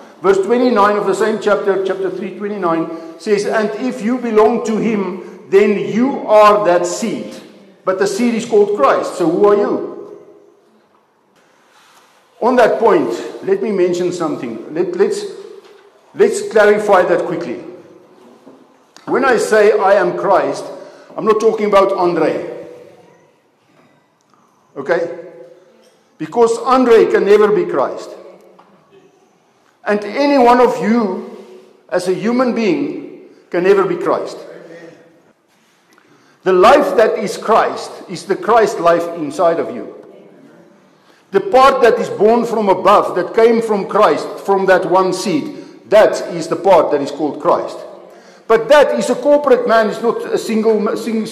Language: English